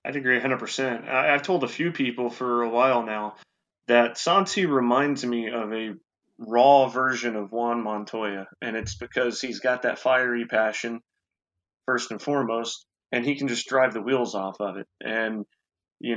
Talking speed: 175 wpm